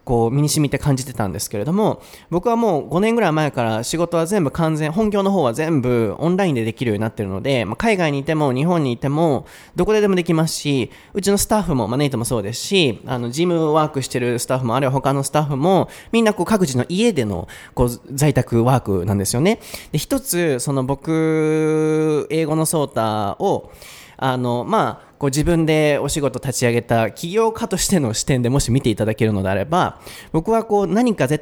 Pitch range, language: 125-180 Hz, Japanese